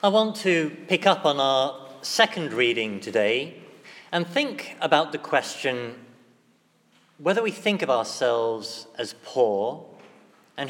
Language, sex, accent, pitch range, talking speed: English, male, British, 140-180 Hz, 130 wpm